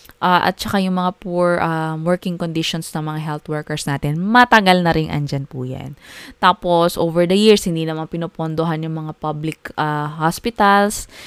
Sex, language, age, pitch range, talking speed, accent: female, Filipino, 20-39, 160-205 Hz, 160 wpm, native